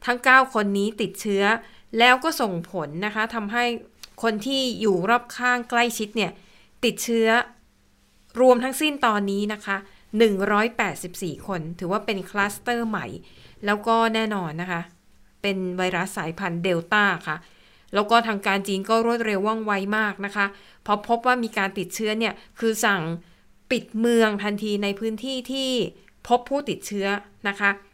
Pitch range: 190-230 Hz